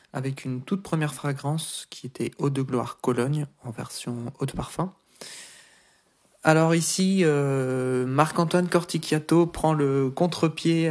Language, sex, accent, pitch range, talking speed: French, male, French, 125-155 Hz, 130 wpm